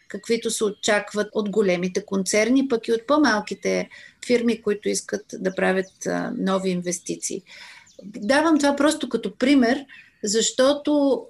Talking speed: 125 wpm